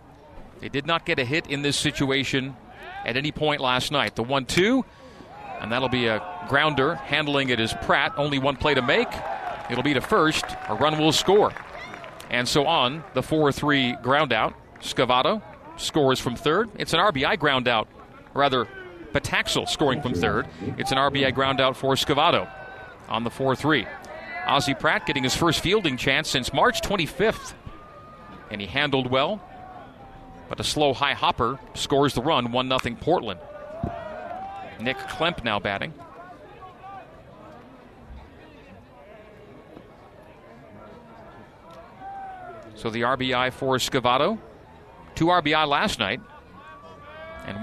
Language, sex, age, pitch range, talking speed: English, male, 40-59, 125-150 Hz, 130 wpm